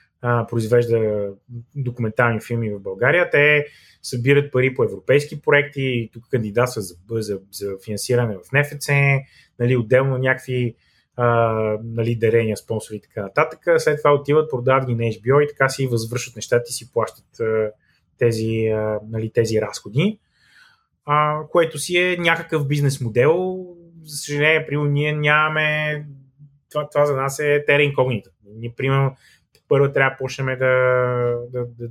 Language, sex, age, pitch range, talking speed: Bulgarian, male, 20-39, 115-145 Hz, 135 wpm